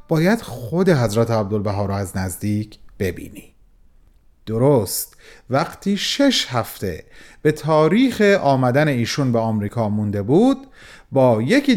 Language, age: Persian, 30-49